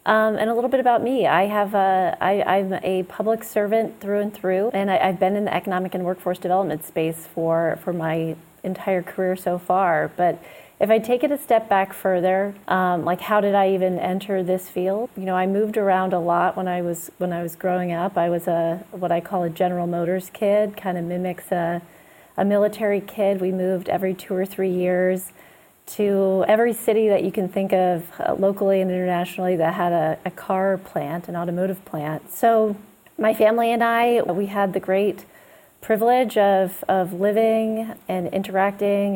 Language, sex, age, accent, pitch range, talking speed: English, female, 30-49, American, 180-200 Hz, 195 wpm